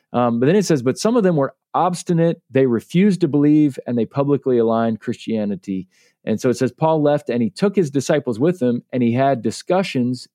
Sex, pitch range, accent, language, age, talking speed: male, 115-145 Hz, American, English, 40-59, 215 wpm